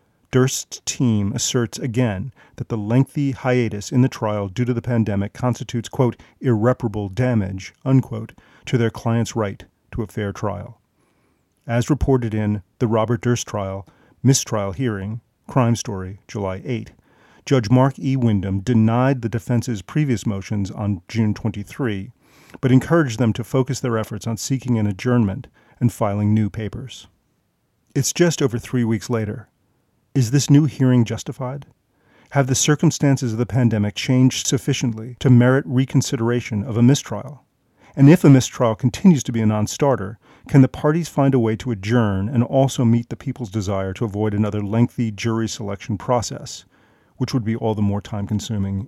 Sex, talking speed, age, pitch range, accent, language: male, 160 wpm, 40-59, 105-130 Hz, American, English